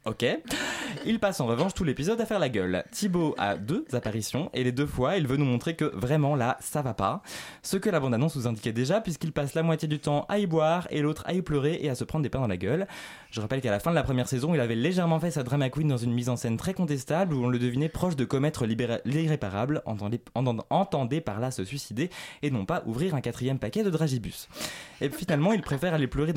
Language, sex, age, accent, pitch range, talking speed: French, male, 20-39, French, 115-165 Hz, 255 wpm